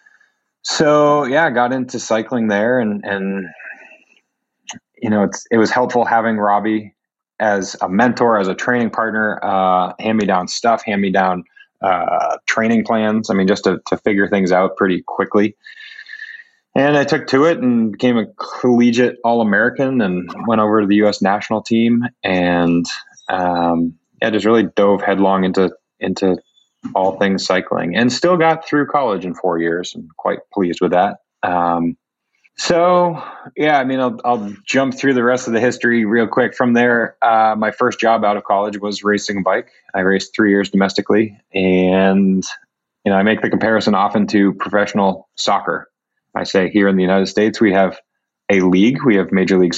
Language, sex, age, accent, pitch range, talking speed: English, male, 20-39, American, 95-120 Hz, 180 wpm